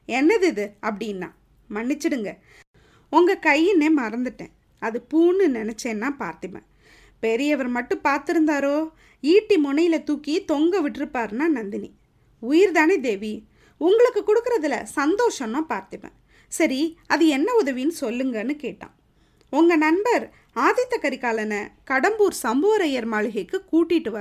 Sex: female